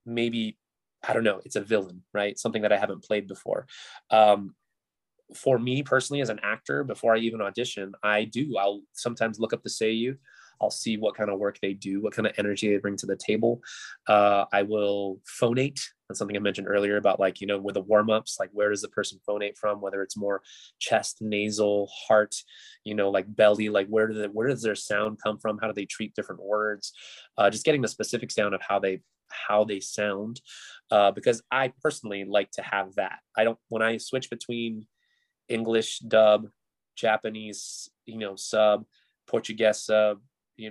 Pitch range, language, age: 100-115 Hz, English, 20-39